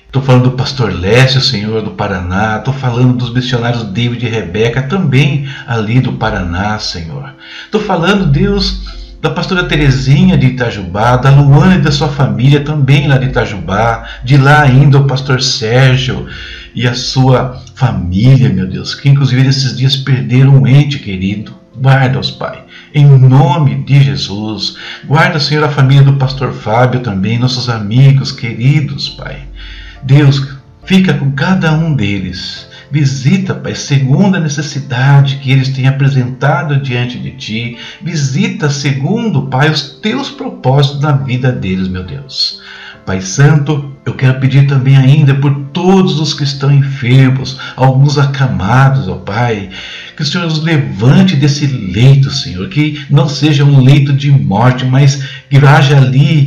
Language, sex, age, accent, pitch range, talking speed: Portuguese, male, 50-69, Brazilian, 125-145 Hz, 150 wpm